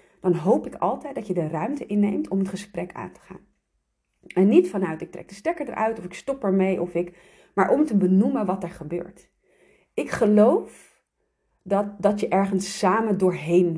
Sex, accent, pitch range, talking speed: female, Dutch, 180-215 Hz, 190 wpm